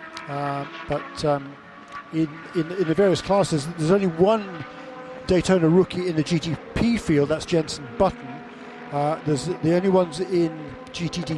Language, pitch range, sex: English, 145-180 Hz, male